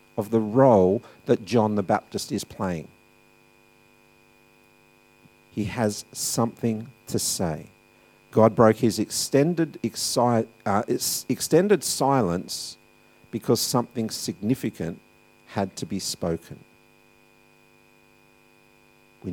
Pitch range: 100-140 Hz